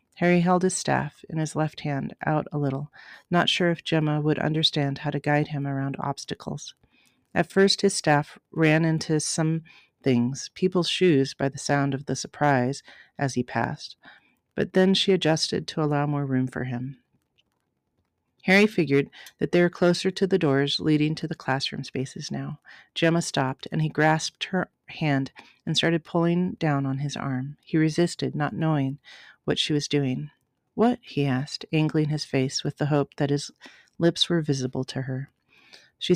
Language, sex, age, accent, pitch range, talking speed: English, female, 40-59, American, 135-170 Hz, 175 wpm